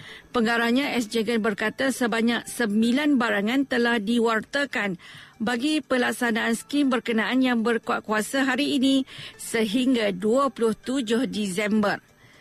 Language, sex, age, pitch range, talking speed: Malay, female, 50-69, 220-255 Hz, 95 wpm